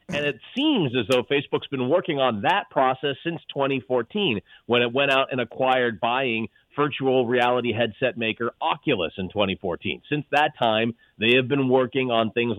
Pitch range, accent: 115-145 Hz, American